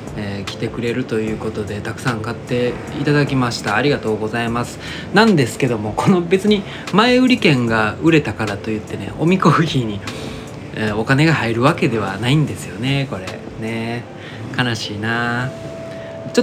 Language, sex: Japanese, male